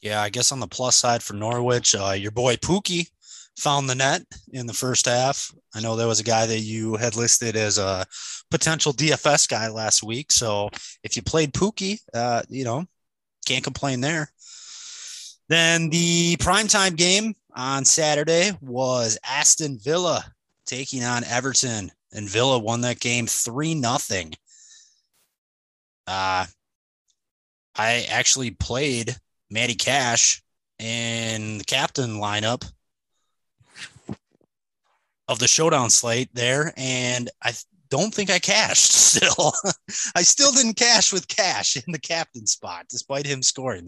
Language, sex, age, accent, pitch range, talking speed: English, male, 20-39, American, 110-150 Hz, 135 wpm